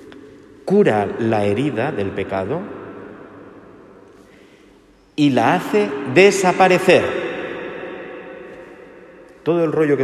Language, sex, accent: Spanish, male, Spanish